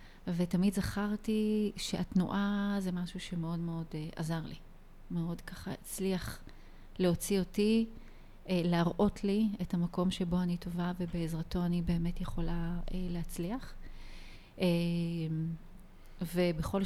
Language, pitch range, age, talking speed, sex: Hebrew, 170-185 Hz, 30-49, 95 wpm, female